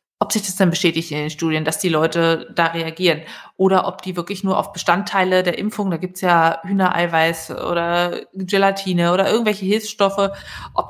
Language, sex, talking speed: German, female, 180 wpm